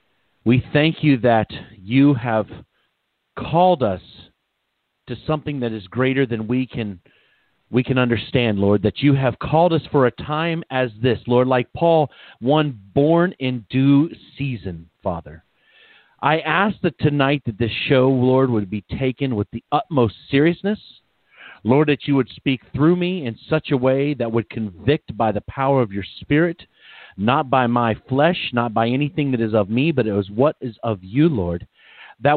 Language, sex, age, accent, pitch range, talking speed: English, male, 40-59, American, 115-150 Hz, 175 wpm